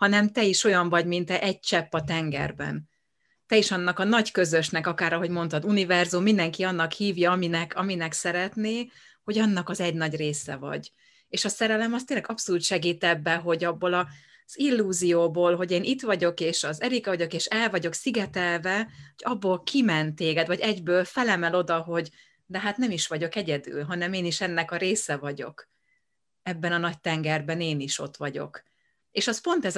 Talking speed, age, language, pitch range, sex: 185 wpm, 30-49, Hungarian, 165-205 Hz, female